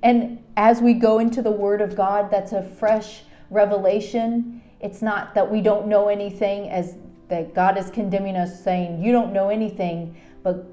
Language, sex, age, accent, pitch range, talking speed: English, female, 30-49, American, 200-255 Hz, 180 wpm